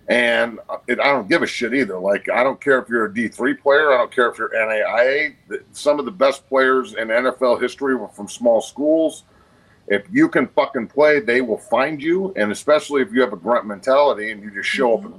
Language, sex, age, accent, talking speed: English, male, 40-59, American, 225 wpm